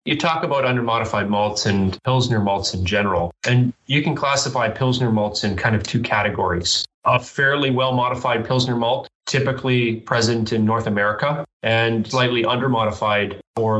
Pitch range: 105-130 Hz